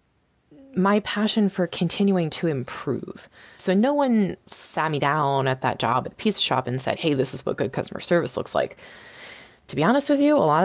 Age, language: 20-39, English